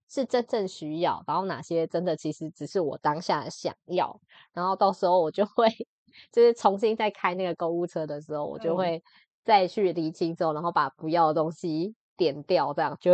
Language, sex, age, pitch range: Chinese, female, 20-39, 160-195 Hz